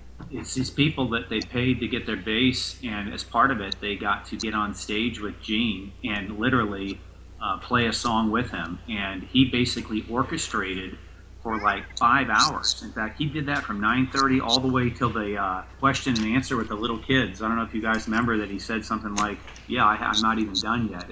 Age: 40-59